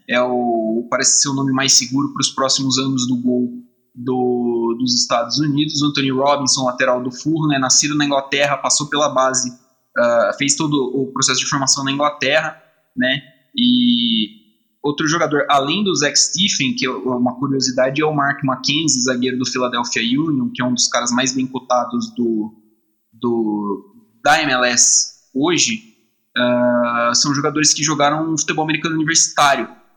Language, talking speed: Portuguese, 160 wpm